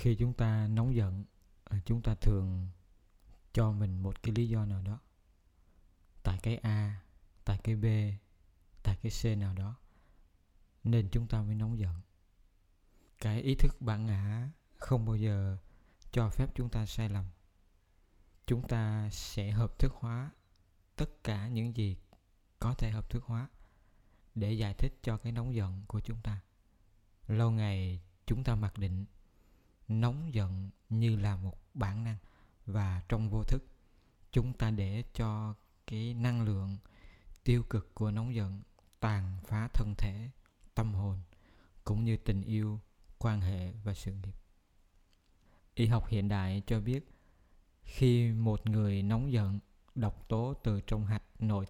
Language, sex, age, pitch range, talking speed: Vietnamese, male, 20-39, 95-115 Hz, 155 wpm